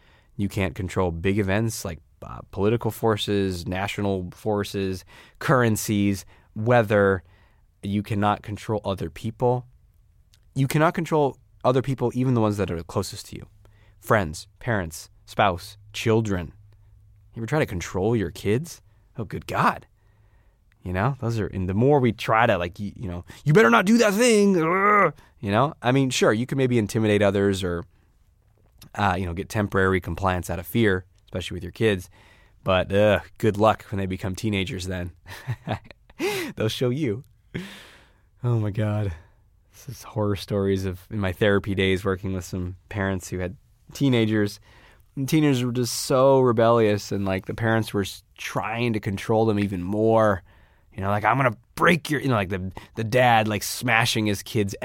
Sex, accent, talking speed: male, American, 170 wpm